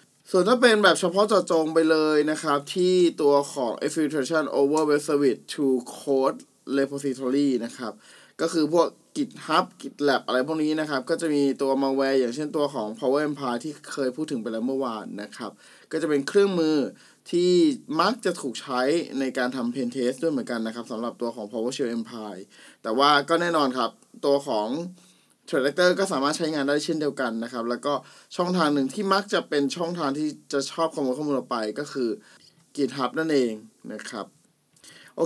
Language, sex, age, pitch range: Thai, male, 20-39, 130-170 Hz